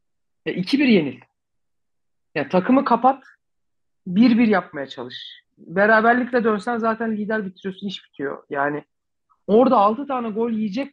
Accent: native